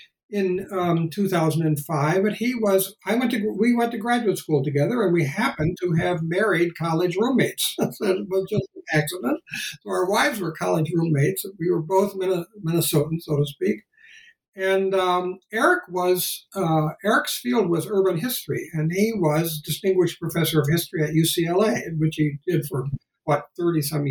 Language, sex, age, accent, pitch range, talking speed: English, male, 60-79, American, 160-215 Hz, 155 wpm